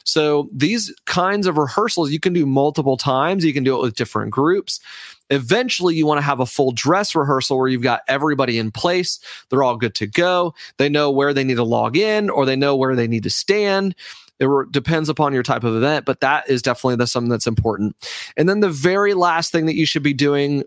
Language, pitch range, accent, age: English, 135-165 Hz, American, 30-49